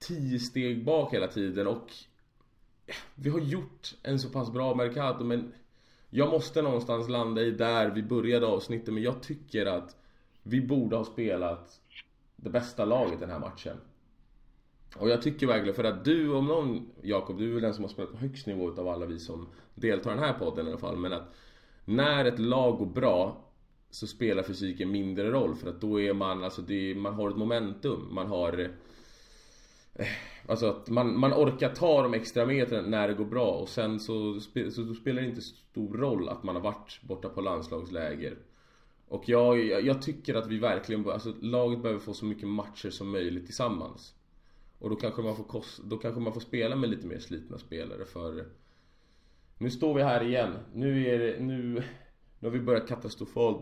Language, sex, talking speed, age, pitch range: Swedish, male, 195 wpm, 20-39, 105-125 Hz